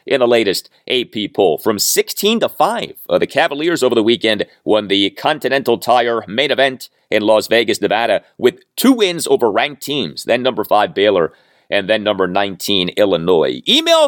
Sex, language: male, English